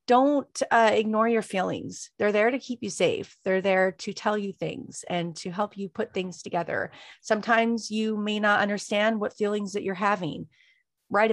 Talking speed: 185 wpm